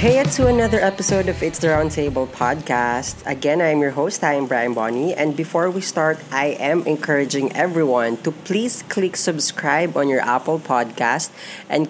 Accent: native